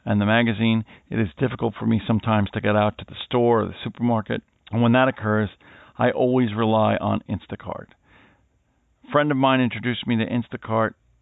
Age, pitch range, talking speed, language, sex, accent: 50-69, 105-120 Hz, 185 wpm, English, male, American